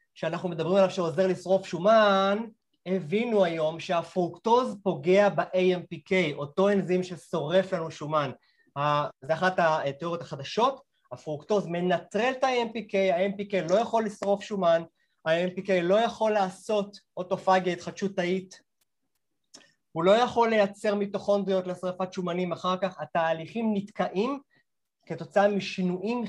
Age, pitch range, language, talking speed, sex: 30-49, 160-200 Hz, Hebrew, 110 wpm, male